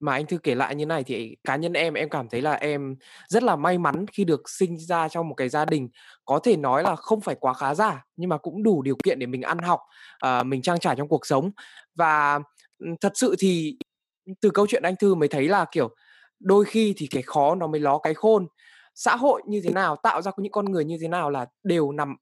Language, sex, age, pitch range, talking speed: Vietnamese, male, 20-39, 145-195 Hz, 250 wpm